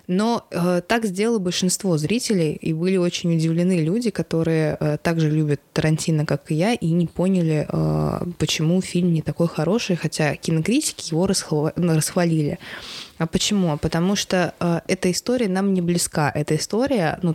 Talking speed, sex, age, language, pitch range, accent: 140 wpm, female, 20-39, Russian, 150-185 Hz, native